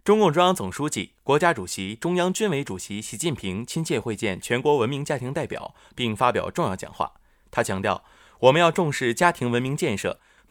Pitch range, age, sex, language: 105-170 Hz, 20-39, male, Chinese